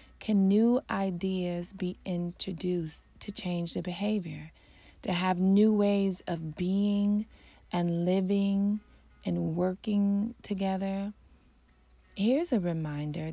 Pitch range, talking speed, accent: 170-215 Hz, 105 wpm, American